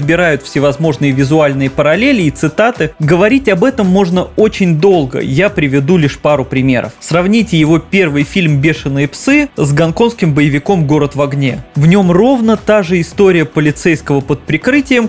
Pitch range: 150-205 Hz